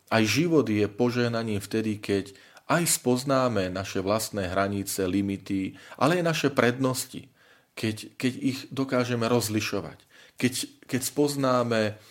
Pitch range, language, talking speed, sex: 95-125 Hz, Slovak, 120 wpm, male